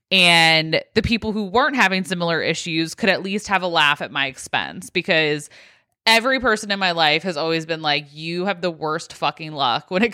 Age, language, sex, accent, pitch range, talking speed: 20-39, English, female, American, 165-215 Hz, 205 wpm